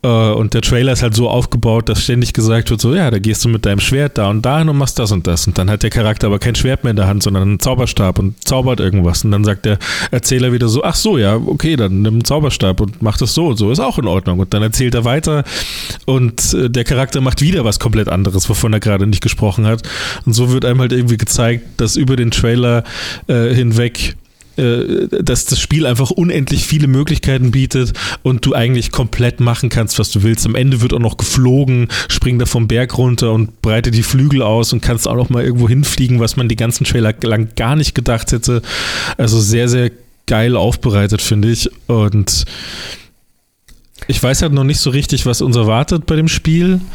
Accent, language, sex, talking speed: German, German, male, 220 wpm